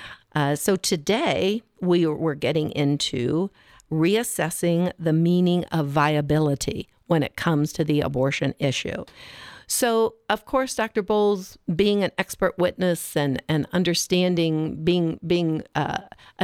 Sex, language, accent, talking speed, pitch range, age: female, English, American, 120 wpm, 165-220 Hz, 50-69